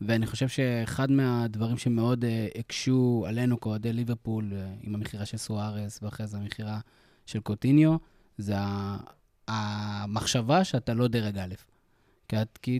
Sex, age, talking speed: male, 20-39, 140 wpm